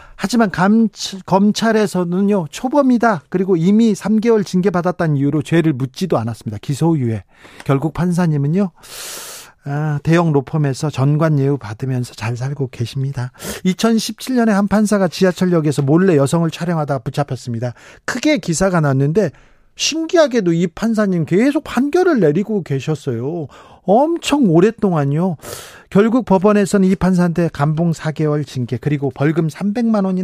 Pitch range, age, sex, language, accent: 145-190 Hz, 40-59, male, Korean, native